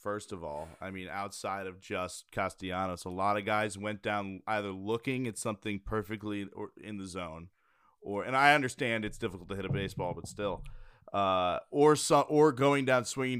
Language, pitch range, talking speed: English, 100-125 Hz, 190 wpm